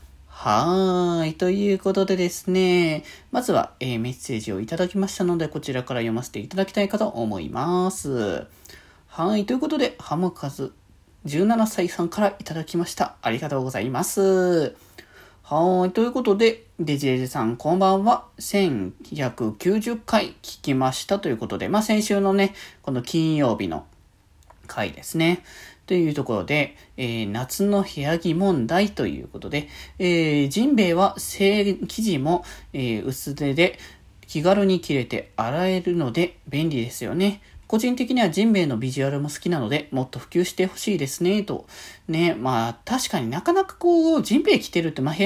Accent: native